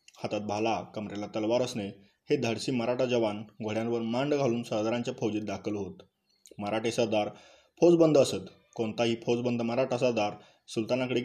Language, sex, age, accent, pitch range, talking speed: Marathi, male, 20-39, native, 105-125 Hz, 135 wpm